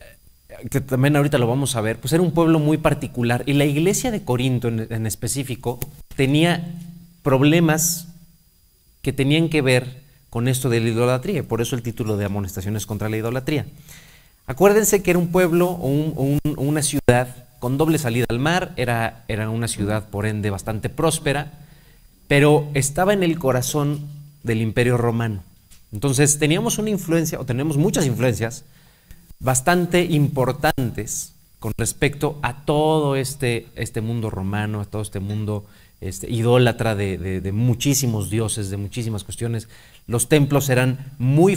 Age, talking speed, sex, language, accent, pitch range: 30-49, 155 wpm, male, Spanish, Mexican, 115-155 Hz